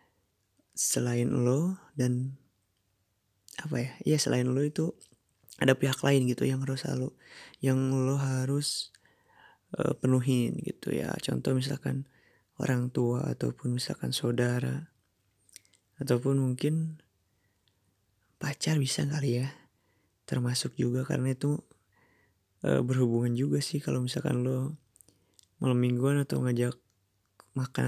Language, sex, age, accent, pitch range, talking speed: Indonesian, male, 20-39, native, 120-140 Hz, 110 wpm